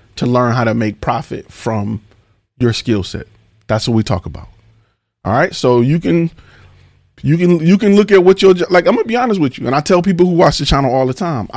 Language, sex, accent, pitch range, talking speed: English, male, American, 115-155 Hz, 240 wpm